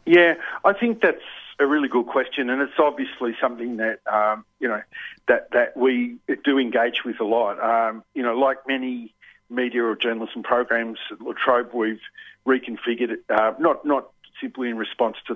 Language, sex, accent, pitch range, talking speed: English, male, Australian, 115-140 Hz, 180 wpm